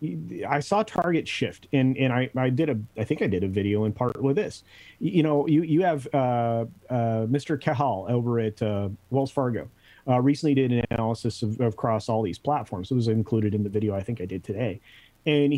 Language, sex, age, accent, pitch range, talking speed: English, male, 30-49, American, 110-145 Hz, 215 wpm